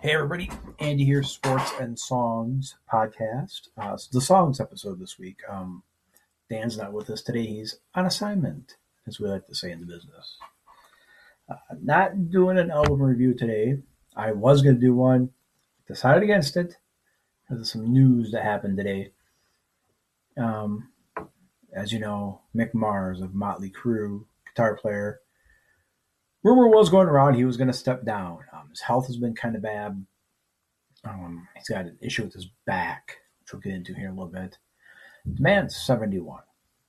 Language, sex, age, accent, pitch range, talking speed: English, male, 40-59, American, 105-135 Hz, 165 wpm